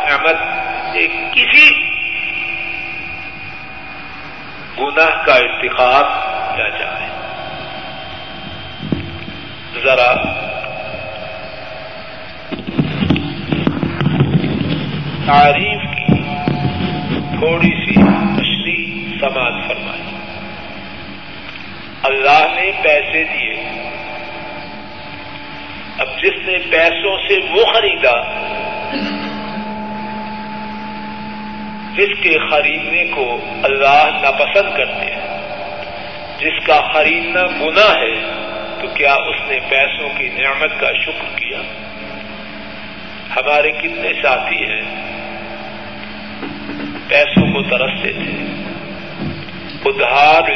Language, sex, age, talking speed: Urdu, male, 50-69, 70 wpm